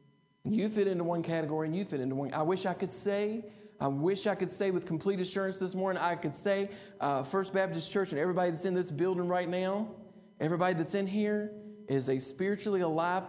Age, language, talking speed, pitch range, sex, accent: 40-59, English, 220 wpm, 140-200 Hz, male, American